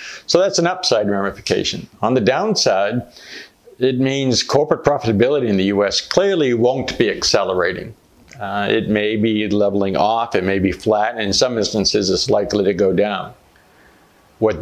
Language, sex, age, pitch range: English, male, 50-69, 100-120 Hz